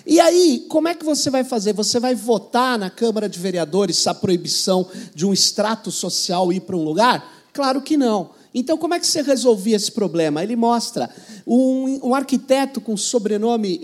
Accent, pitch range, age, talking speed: Brazilian, 205-255 Hz, 50-69, 190 wpm